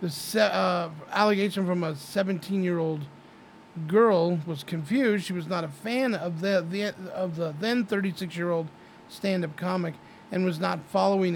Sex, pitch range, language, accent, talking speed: male, 175-205 Hz, English, American, 150 wpm